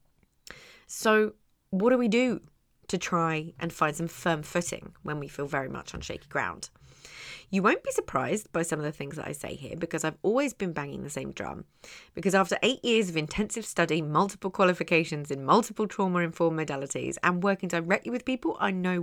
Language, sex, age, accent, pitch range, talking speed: English, female, 30-49, British, 155-200 Hz, 190 wpm